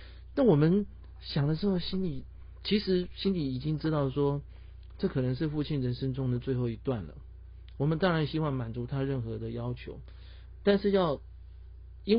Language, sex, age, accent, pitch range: Chinese, male, 50-69, native, 85-135 Hz